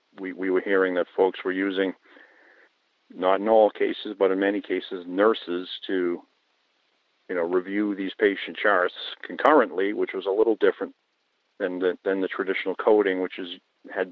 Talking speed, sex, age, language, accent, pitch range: 165 wpm, male, 50-69, English, American, 90-115 Hz